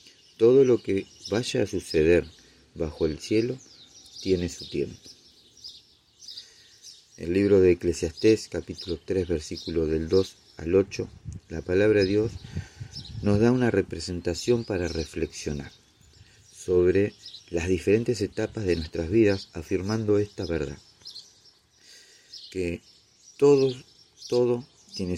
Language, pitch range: Spanish, 85-105 Hz